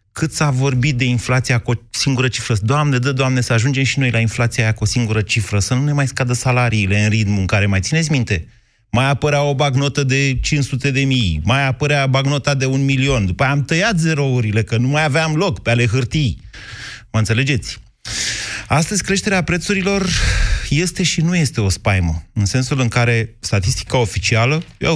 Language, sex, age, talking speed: Romanian, male, 30-49, 195 wpm